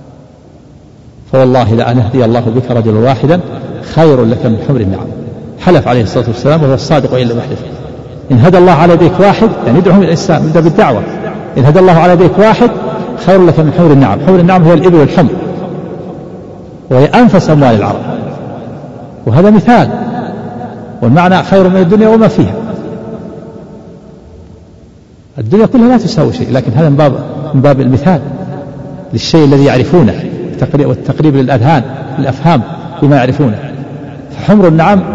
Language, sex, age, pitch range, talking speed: Arabic, male, 60-79, 120-165 Hz, 135 wpm